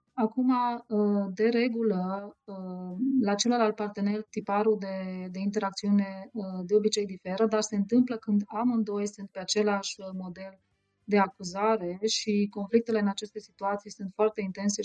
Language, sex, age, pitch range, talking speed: Romanian, female, 30-49, 195-220 Hz, 130 wpm